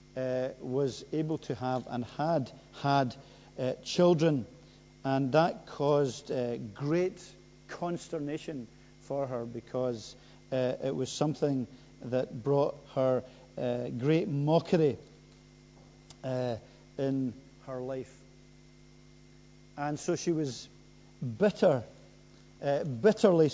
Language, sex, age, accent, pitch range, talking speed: English, male, 50-69, British, 130-170 Hz, 100 wpm